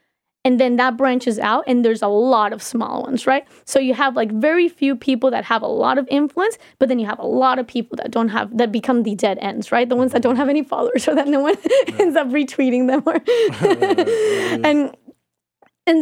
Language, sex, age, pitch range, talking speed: English, female, 20-39, 230-285 Hz, 230 wpm